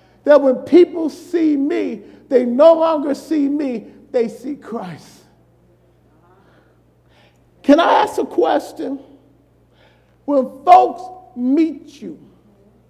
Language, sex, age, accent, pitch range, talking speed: English, male, 50-69, American, 210-335 Hz, 100 wpm